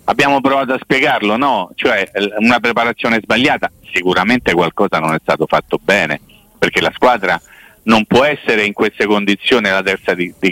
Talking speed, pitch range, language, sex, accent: 165 wpm, 100-120 Hz, Italian, male, native